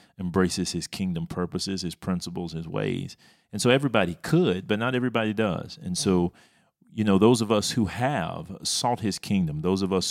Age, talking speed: 40-59, 185 wpm